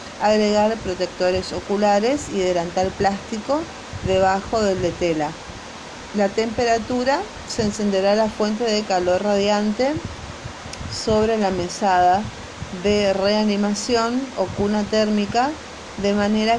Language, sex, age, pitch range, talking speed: Spanish, female, 40-59, 190-230 Hz, 105 wpm